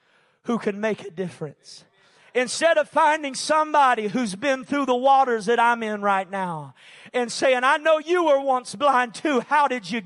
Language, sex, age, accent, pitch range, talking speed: English, male, 40-59, American, 190-270 Hz, 185 wpm